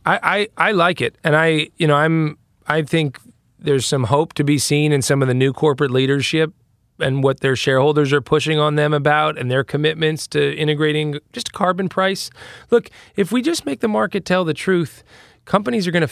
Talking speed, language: 210 wpm, English